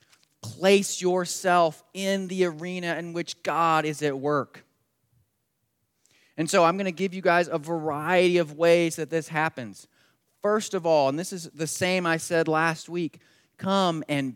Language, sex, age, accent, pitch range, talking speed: English, male, 30-49, American, 125-170 Hz, 165 wpm